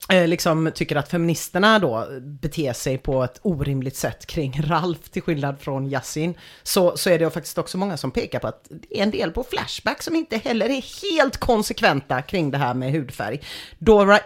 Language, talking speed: English, 195 wpm